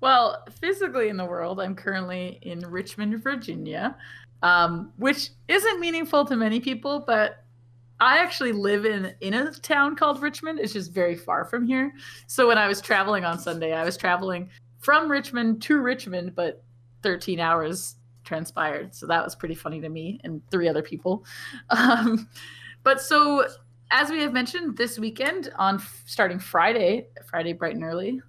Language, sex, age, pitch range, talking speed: English, female, 30-49, 165-235 Hz, 170 wpm